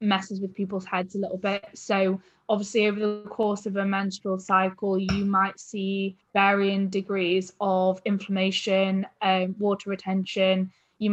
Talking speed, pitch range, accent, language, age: 145 wpm, 195-215 Hz, British, English, 10-29